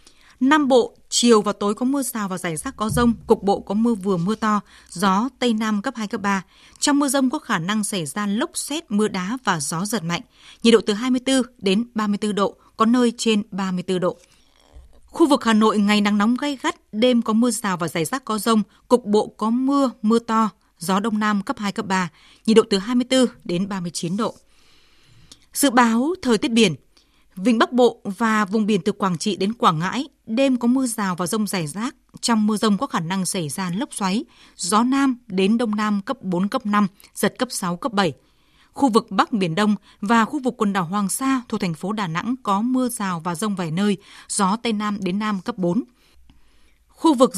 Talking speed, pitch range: 220 wpm, 195-245 Hz